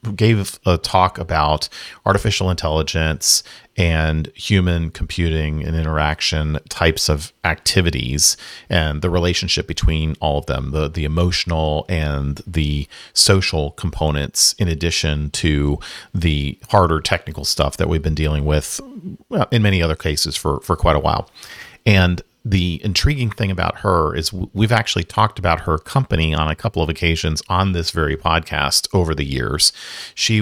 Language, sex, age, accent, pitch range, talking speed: English, male, 40-59, American, 80-95 Hz, 150 wpm